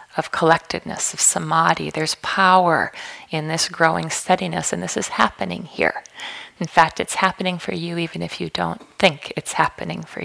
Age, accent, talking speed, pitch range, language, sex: 40-59, American, 170 wpm, 160-195 Hz, English, female